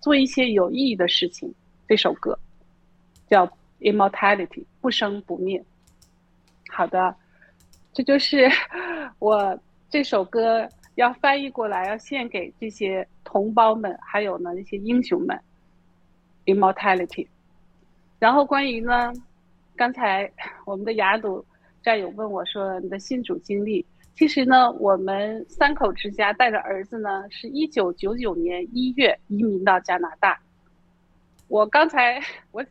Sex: female